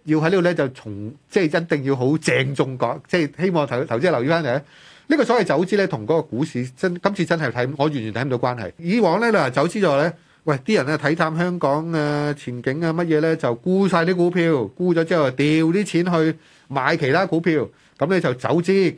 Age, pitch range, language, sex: 30-49, 135-175 Hz, Chinese, male